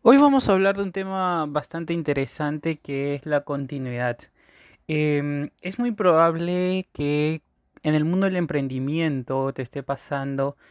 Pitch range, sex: 135-165 Hz, male